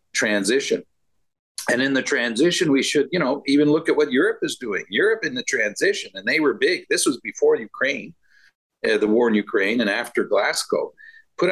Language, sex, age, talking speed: English, male, 50-69, 195 wpm